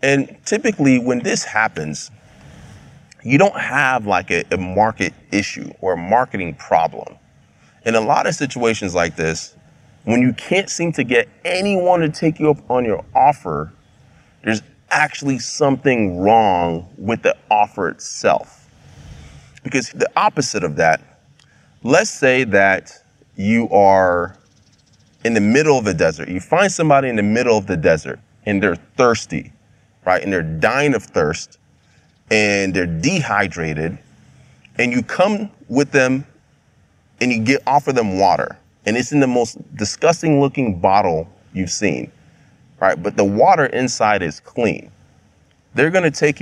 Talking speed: 150 wpm